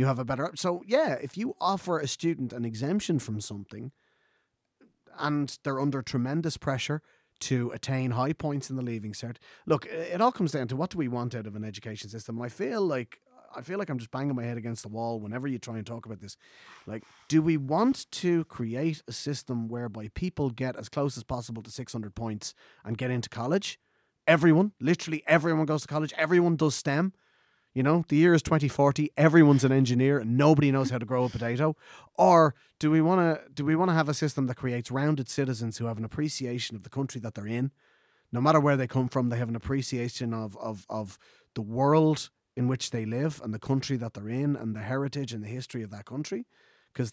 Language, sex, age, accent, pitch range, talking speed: English, male, 30-49, Irish, 115-150 Hz, 225 wpm